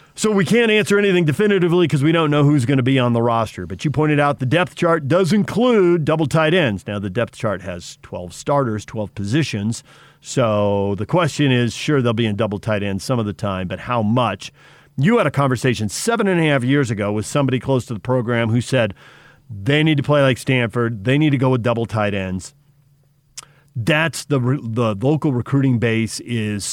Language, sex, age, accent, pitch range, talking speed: English, male, 40-59, American, 110-150 Hz, 215 wpm